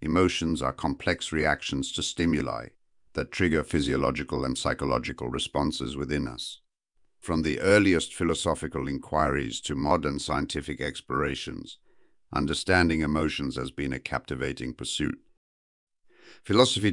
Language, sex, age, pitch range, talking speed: English, male, 50-69, 70-80 Hz, 110 wpm